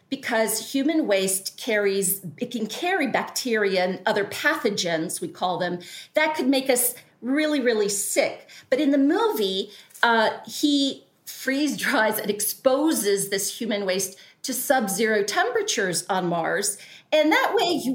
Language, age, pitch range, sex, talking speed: English, 40-59, 205-280 Hz, female, 145 wpm